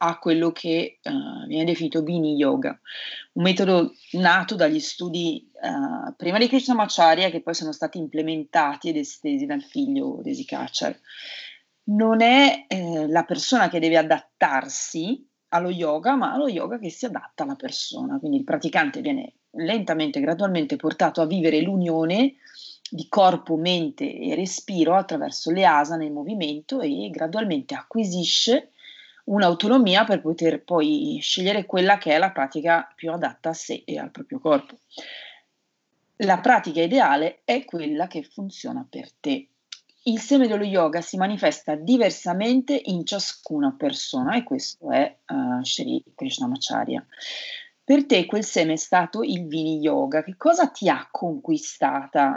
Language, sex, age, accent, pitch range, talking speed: Italian, female, 30-49, native, 165-275 Hz, 140 wpm